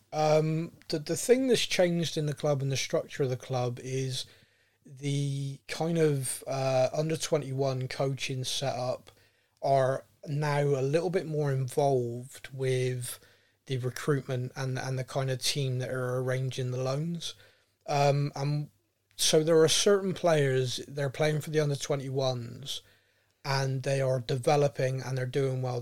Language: English